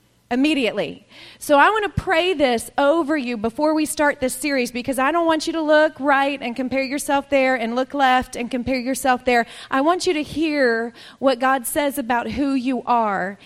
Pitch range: 215-270 Hz